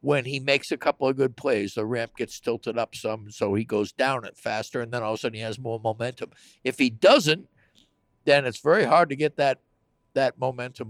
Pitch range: 110-140 Hz